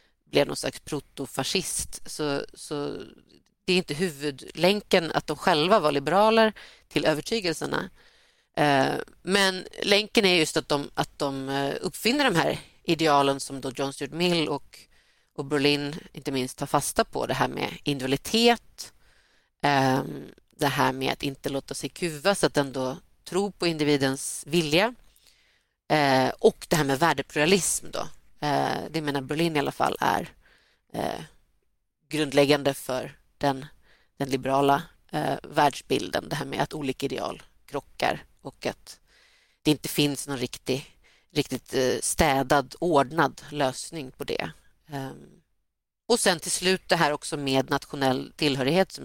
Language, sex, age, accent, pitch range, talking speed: Swedish, female, 40-59, native, 140-170 Hz, 135 wpm